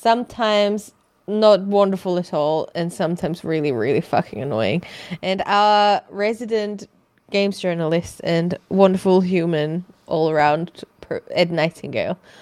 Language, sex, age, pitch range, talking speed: English, female, 20-39, 165-210 Hz, 110 wpm